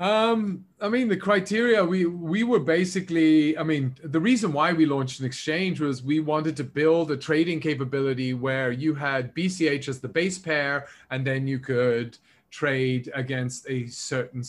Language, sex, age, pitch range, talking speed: English, male, 30-49, 125-155 Hz, 175 wpm